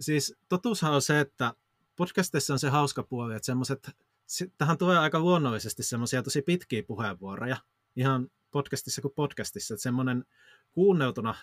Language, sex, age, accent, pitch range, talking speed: Finnish, male, 30-49, native, 110-140 Hz, 140 wpm